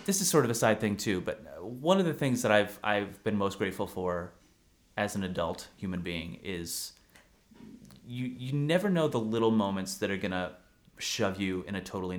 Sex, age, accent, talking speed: male, 30-49, American, 205 wpm